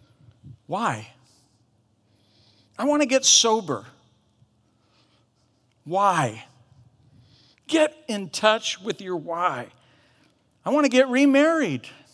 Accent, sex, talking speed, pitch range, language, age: American, male, 90 wpm, 135-225 Hz, English, 50-69